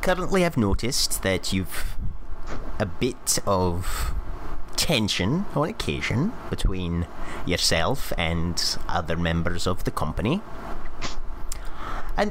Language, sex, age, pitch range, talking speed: English, male, 30-49, 85-140 Hz, 95 wpm